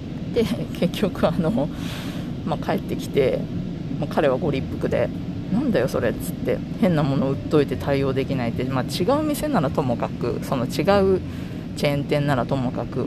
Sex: female